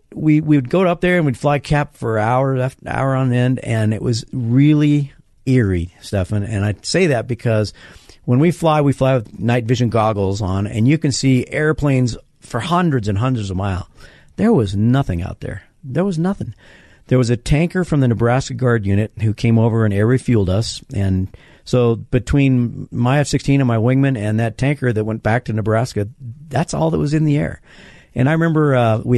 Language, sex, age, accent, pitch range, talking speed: English, male, 50-69, American, 110-135 Hz, 205 wpm